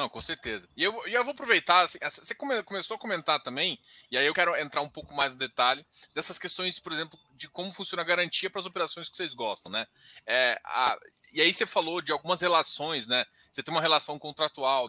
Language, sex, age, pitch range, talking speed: Portuguese, male, 20-39, 145-195 Hz, 230 wpm